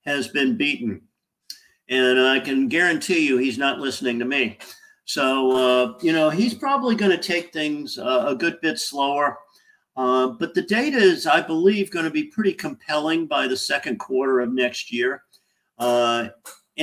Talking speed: 170 wpm